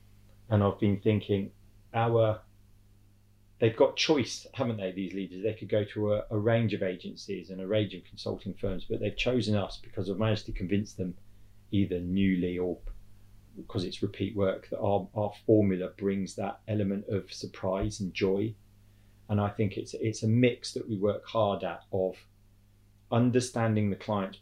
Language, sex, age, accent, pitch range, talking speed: English, male, 30-49, British, 100-110 Hz, 175 wpm